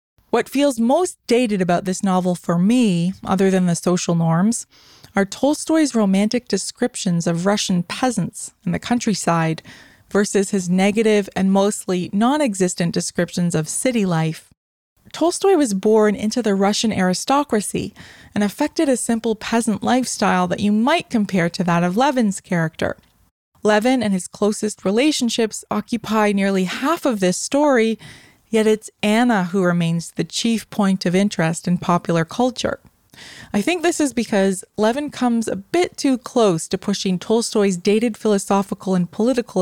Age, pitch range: 20-39, 180-235 Hz